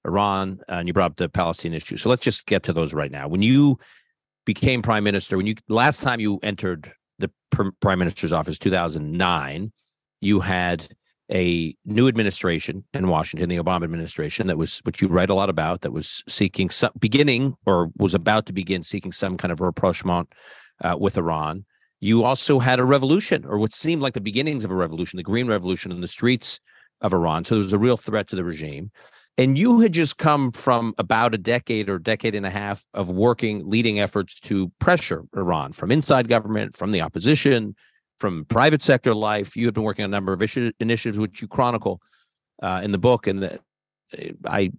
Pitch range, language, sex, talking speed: 95-120 Hz, English, male, 200 wpm